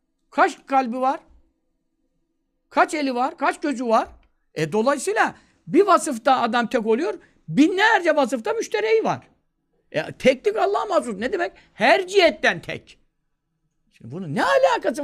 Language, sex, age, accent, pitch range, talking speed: Turkish, male, 60-79, native, 200-295 Hz, 130 wpm